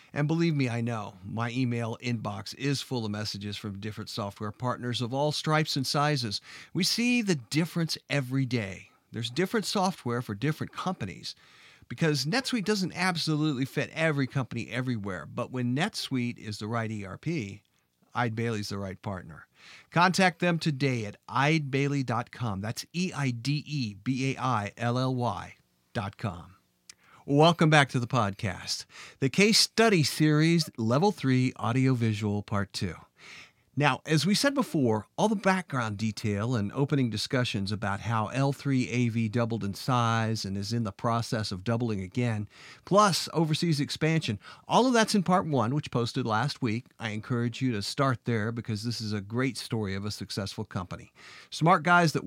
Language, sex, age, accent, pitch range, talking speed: English, male, 50-69, American, 110-150 Hz, 150 wpm